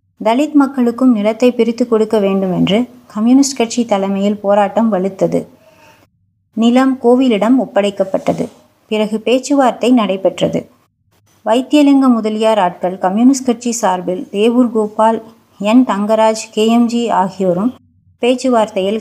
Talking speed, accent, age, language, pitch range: 100 wpm, native, 20-39, Tamil, 195-240 Hz